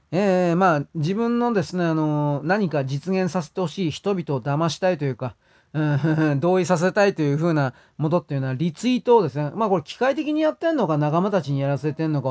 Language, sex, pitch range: Japanese, male, 145-190 Hz